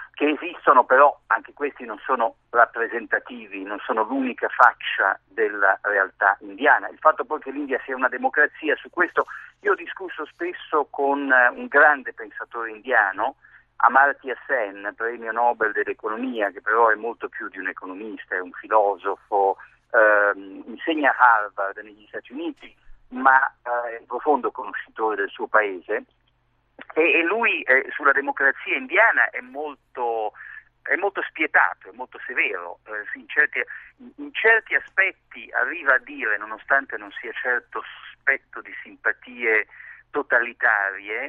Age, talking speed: 50-69, 140 wpm